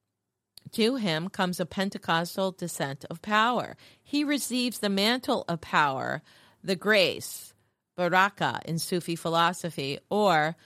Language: English